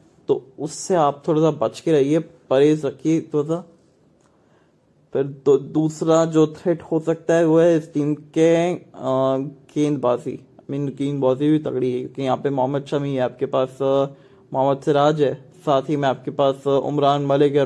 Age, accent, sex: 20-39, Indian, male